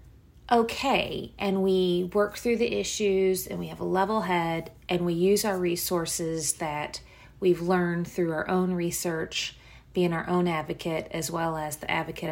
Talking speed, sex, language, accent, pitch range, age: 165 wpm, female, English, American, 165-200 Hz, 40-59